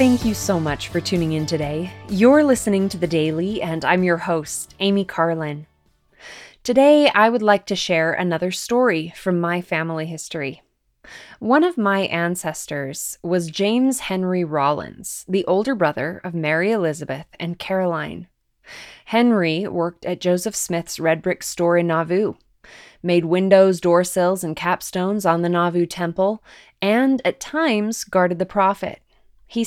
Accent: American